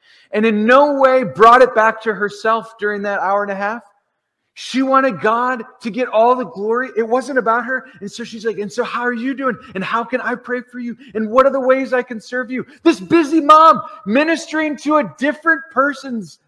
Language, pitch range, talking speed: English, 170-285 Hz, 220 wpm